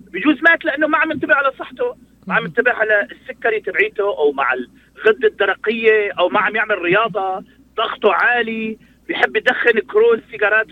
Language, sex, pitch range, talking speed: Arabic, male, 200-265 Hz, 160 wpm